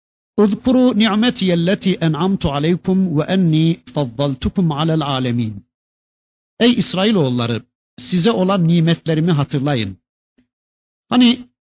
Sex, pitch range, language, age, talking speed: male, 135-210 Hz, Turkish, 50-69, 90 wpm